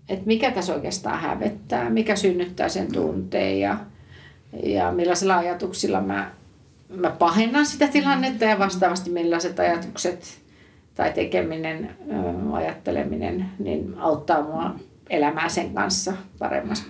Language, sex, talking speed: Finnish, female, 115 wpm